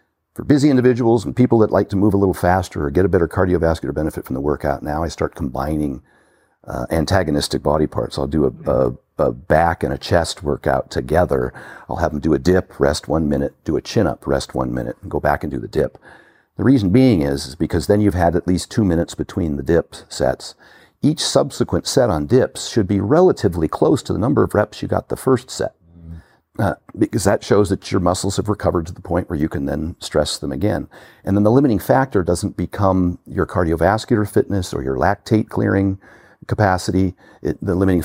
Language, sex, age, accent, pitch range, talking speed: English, male, 50-69, American, 75-100 Hz, 210 wpm